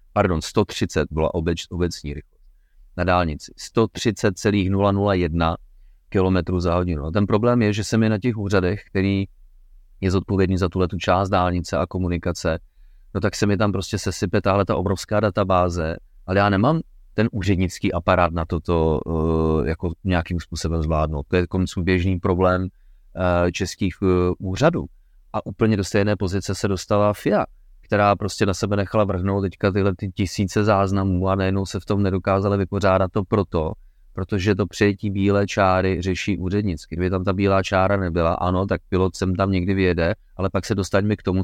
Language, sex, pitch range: Czech, male, 90-105 Hz